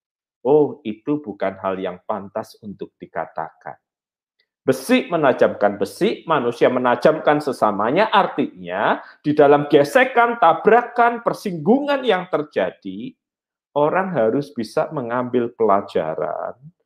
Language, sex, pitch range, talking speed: Malay, male, 100-165 Hz, 95 wpm